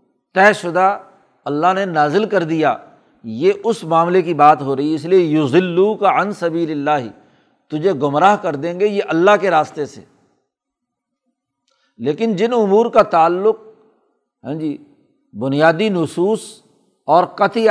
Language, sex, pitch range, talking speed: Urdu, male, 155-200 Hz, 145 wpm